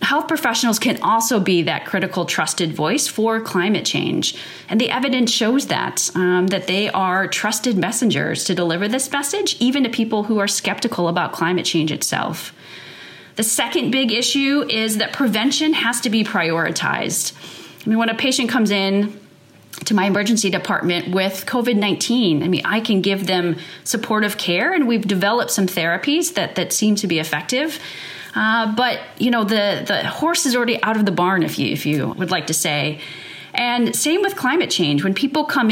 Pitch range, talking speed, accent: 175-235 Hz, 185 wpm, American